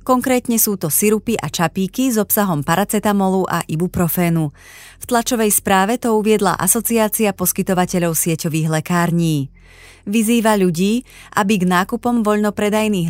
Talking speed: 120 wpm